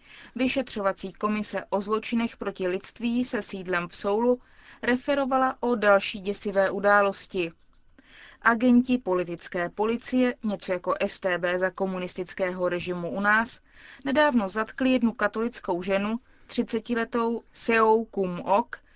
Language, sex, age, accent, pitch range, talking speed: Czech, female, 20-39, native, 185-240 Hz, 110 wpm